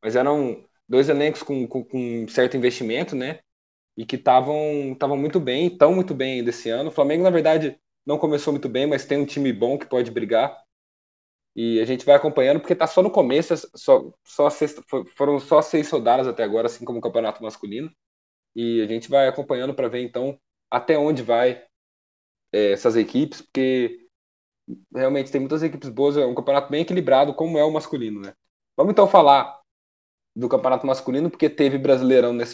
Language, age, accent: Portuguese, 20-39, Brazilian